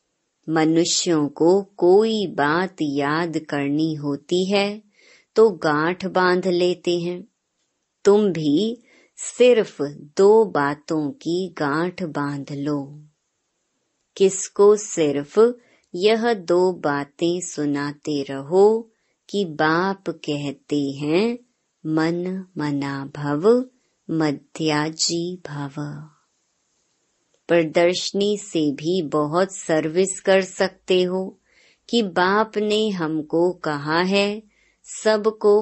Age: 20-39